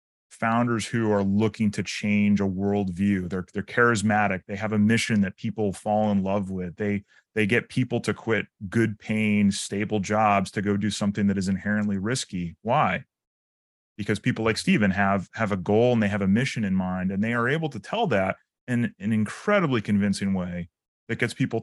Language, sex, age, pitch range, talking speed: English, male, 30-49, 100-115 Hz, 195 wpm